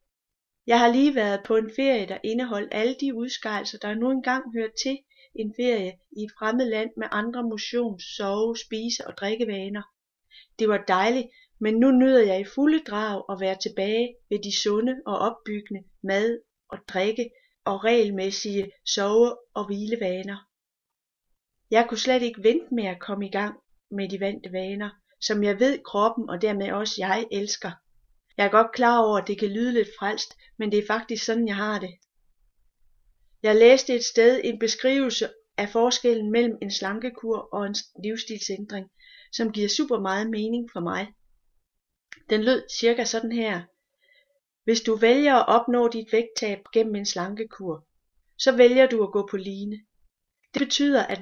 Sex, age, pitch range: female, 30-49, 200-240 Hz